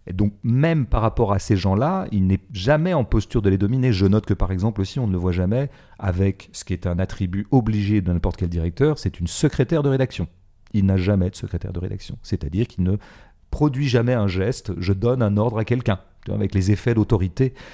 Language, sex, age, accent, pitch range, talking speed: French, male, 40-59, French, 95-115 Hz, 225 wpm